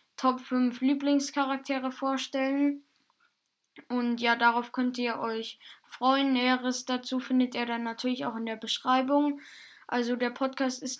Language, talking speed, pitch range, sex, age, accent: German, 135 wpm, 245-270 Hz, female, 10-29, German